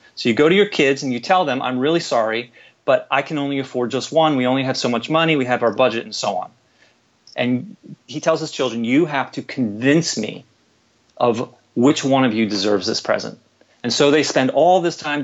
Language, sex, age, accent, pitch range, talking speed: English, male, 30-49, American, 125-155 Hz, 230 wpm